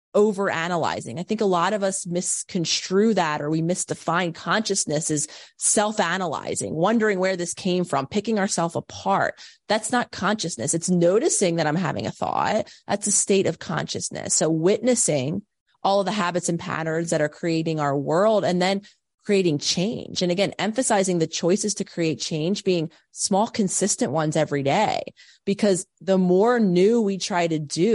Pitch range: 170-210 Hz